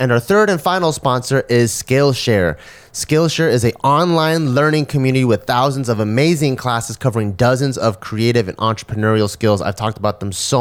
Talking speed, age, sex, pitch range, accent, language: 175 wpm, 30-49, male, 110-135 Hz, American, English